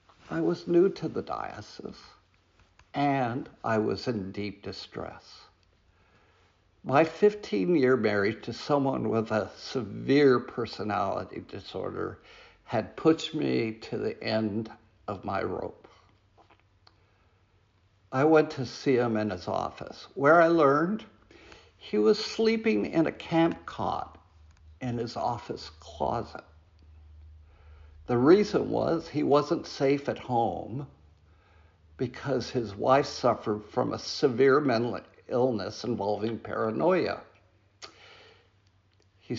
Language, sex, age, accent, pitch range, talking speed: English, male, 60-79, American, 95-140 Hz, 110 wpm